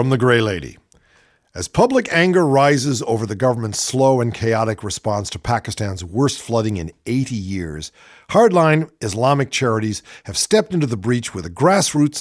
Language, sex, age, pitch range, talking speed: English, male, 50-69, 115-155 Hz, 160 wpm